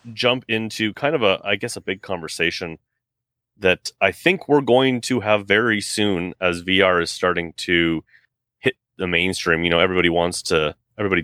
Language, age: English, 30-49